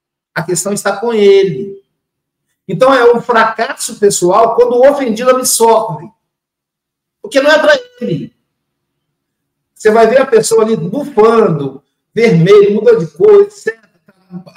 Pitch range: 135-200 Hz